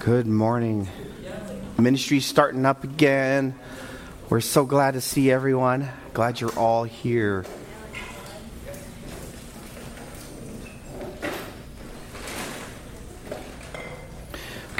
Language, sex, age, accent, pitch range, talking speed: English, male, 40-59, American, 105-130 Hz, 70 wpm